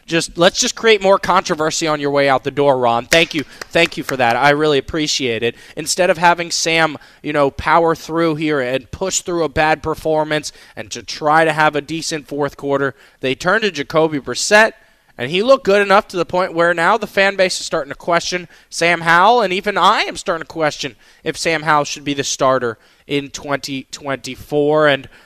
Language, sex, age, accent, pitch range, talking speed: English, male, 20-39, American, 145-185 Hz, 210 wpm